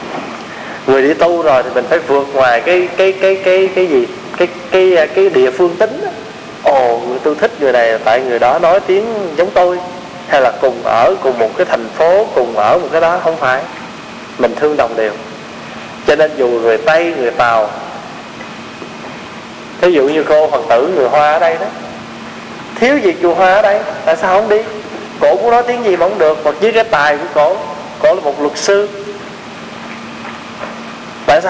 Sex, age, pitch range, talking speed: male, 20-39, 145-200 Hz, 195 wpm